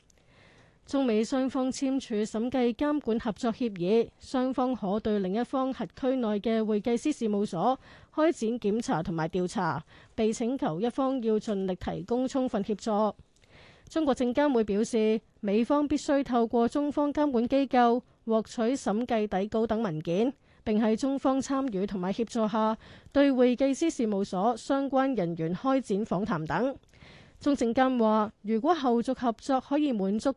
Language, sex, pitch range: Chinese, female, 210-260 Hz